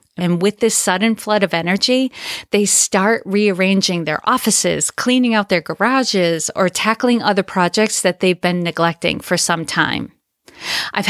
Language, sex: English, female